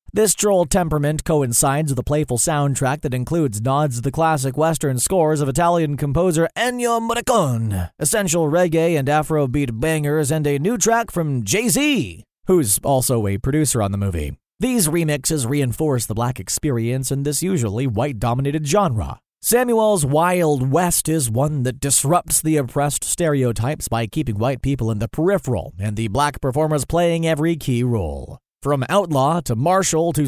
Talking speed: 160 wpm